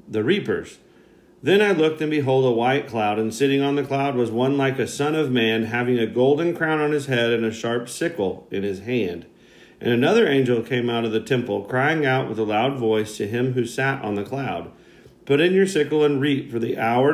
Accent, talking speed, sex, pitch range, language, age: American, 230 wpm, male, 110-140 Hz, English, 40-59